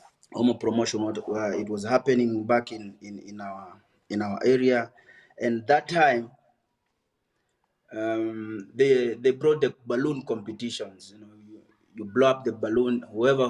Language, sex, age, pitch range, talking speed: English, male, 30-49, 105-125 Hz, 140 wpm